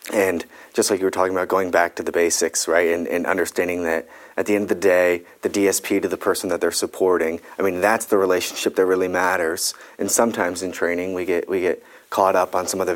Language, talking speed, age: English, 245 wpm, 30-49